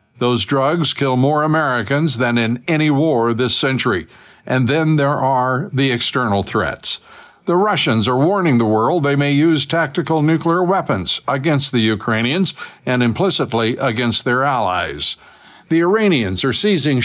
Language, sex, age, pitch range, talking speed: English, male, 60-79, 125-160 Hz, 150 wpm